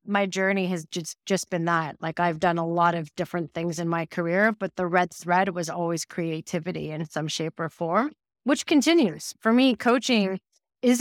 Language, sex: English, female